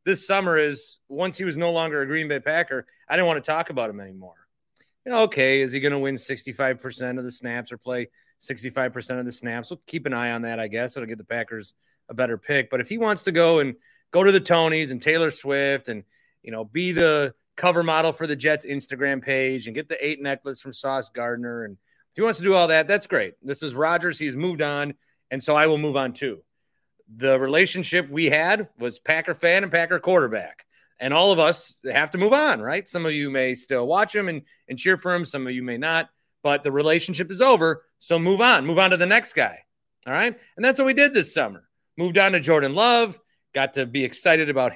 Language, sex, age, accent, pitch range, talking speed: English, male, 30-49, American, 135-185 Hz, 235 wpm